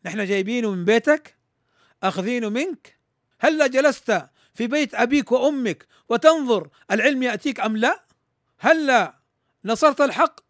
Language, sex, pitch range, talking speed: Arabic, male, 190-300 Hz, 115 wpm